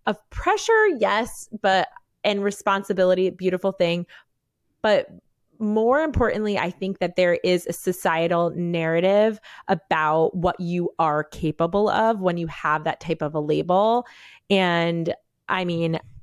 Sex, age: female, 20-39